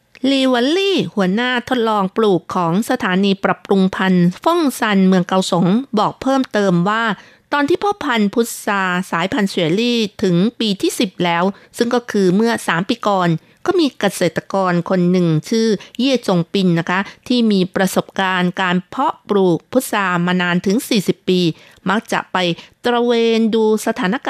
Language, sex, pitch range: Thai, female, 180-230 Hz